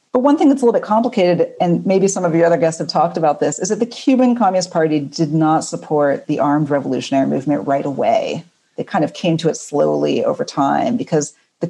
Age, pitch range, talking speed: 40-59, 150-195 Hz, 230 wpm